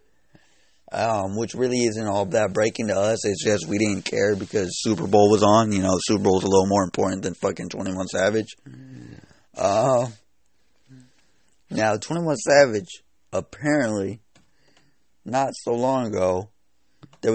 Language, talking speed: English, 150 wpm